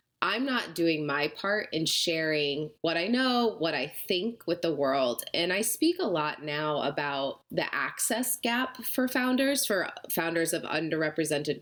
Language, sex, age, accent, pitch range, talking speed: English, female, 20-39, American, 150-190 Hz, 165 wpm